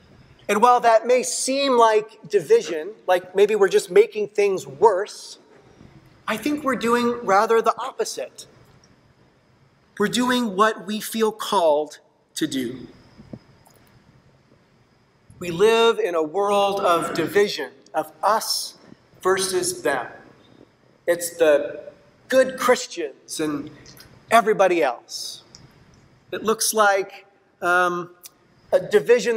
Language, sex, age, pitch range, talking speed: English, male, 40-59, 200-280 Hz, 105 wpm